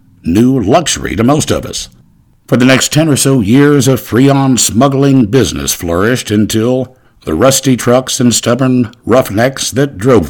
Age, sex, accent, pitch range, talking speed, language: 60-79, male, American, 105-135 Hz, 155 wpm, English